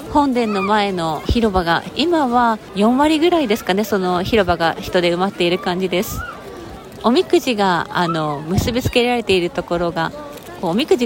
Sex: female